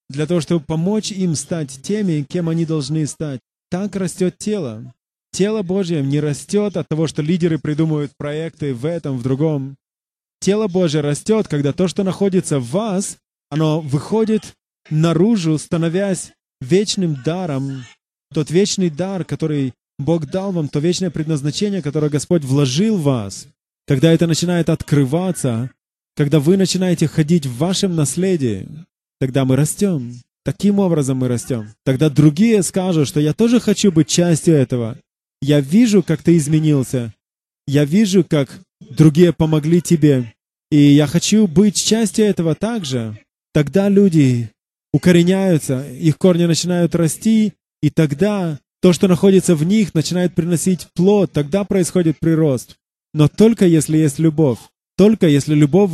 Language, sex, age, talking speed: English, male, 20-39, 140 wpm